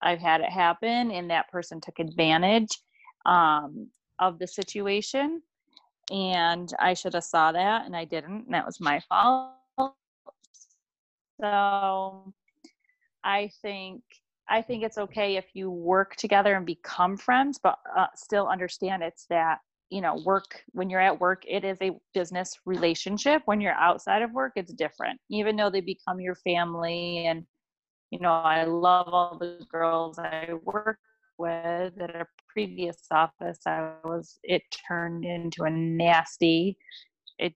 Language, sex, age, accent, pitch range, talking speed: English, female, 30-49, American, 170-210 Hz, 150 wpm